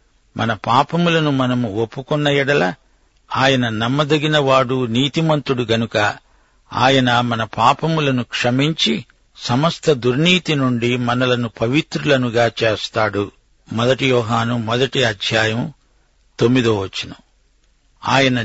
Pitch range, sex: 115-145 Hz, male